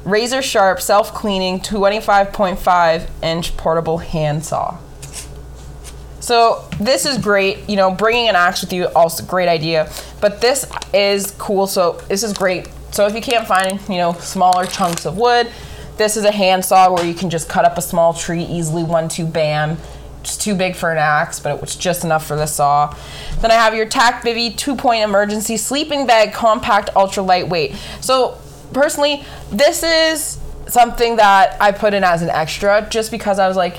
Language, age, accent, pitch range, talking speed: English, 20-39, American, 165-210 Hz, 180 wpm